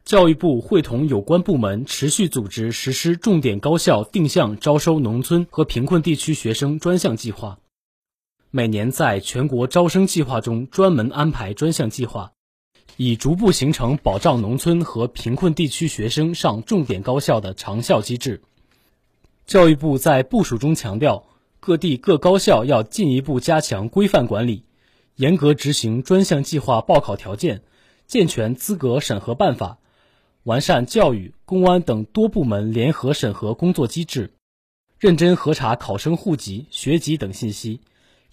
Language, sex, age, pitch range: Chinese, male, 20-39, 115-170 Hz